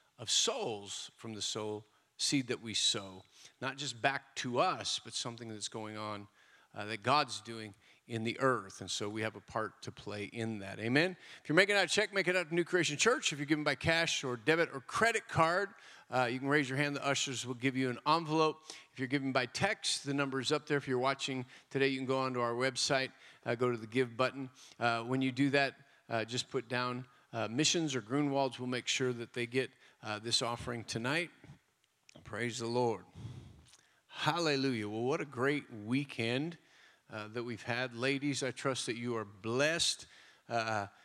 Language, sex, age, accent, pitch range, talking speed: English, male, 40-59, American, 115-140 Hz, 210 wpm